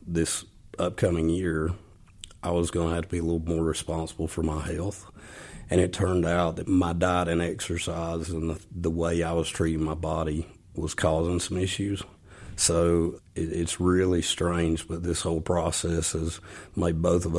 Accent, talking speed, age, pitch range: American, 175 wpm, 40-59, 80-90 Hz